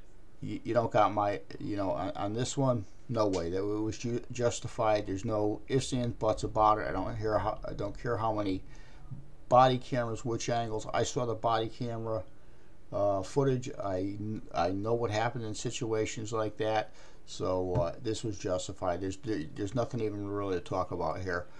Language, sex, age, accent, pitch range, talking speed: English, male, 50-69, American, 105-130 Hz, 190 wpm